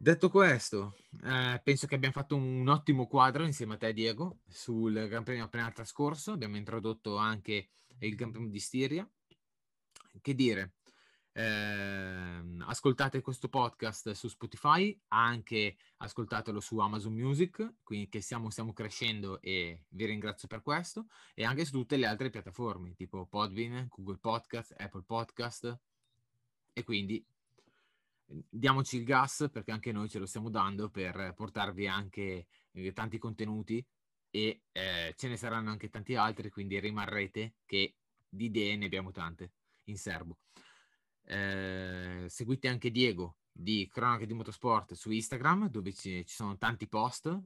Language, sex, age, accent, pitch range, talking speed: Italian, male, 20-39, native, 105-130 Hz, 145 wpm